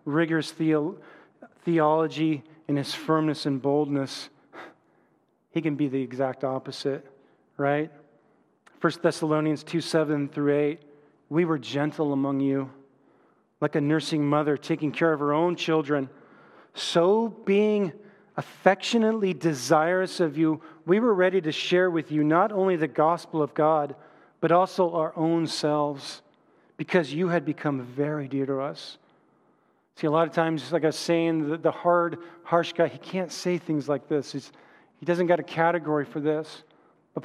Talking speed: 150 wpm